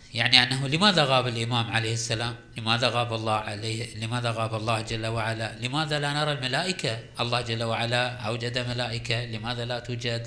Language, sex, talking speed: Arabic, male, 165 wpm